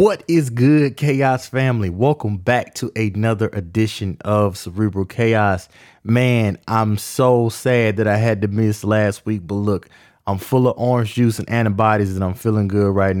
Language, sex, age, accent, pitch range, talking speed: English, male, 20-39, American, 95-115 Hz, 175 wpm